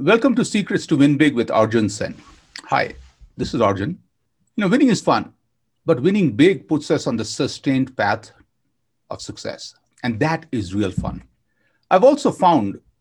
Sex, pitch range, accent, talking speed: male, 125-165 Hz, Indian, 170 wpm